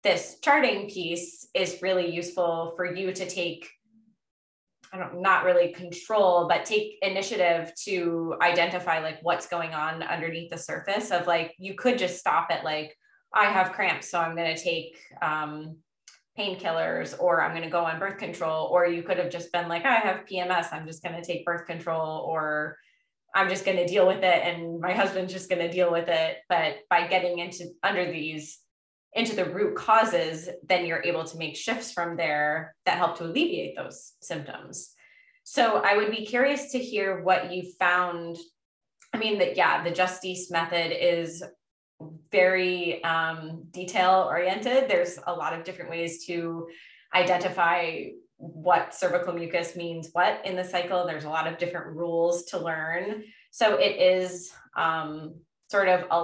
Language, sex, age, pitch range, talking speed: English, female, 20-39, 165-185 Hz, 170 wpm